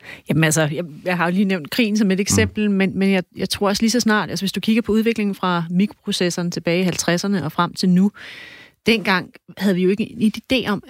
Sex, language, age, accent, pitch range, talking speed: female, Danish, 30-49, native, 170-200 Hz, 250 wpm